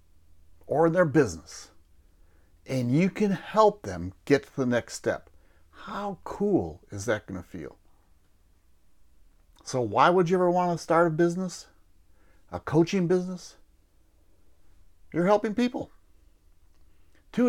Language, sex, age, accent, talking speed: English, male, 60-79, American, 125 wpm